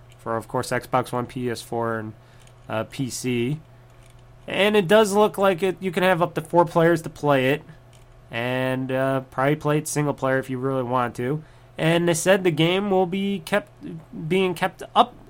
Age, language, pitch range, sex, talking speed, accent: 20-39, English, 125-175 Hz, male, 190 wpm, American